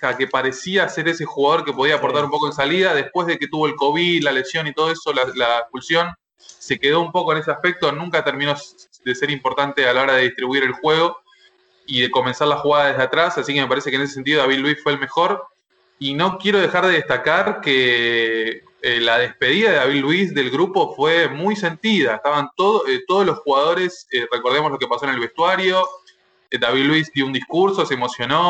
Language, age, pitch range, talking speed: English, 20-39, 135-185 Hz, 215 wpm